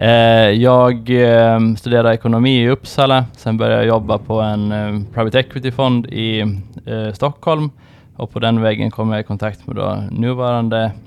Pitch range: 105-120 Hz